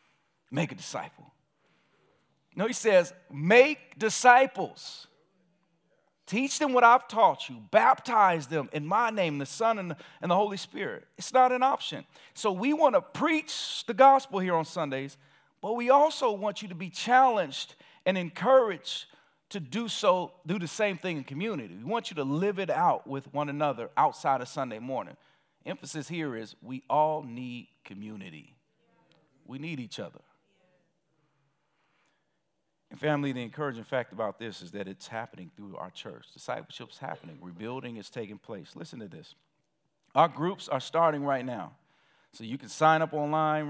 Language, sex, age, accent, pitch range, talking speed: English, male, 40-59, American, 140-190 Hz, 160 wpm